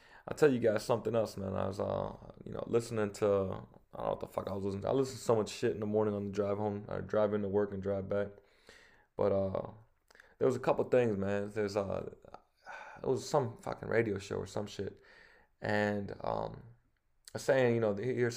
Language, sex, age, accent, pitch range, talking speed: English, male, 20-39, American, 100-110 Hz, 225 wpm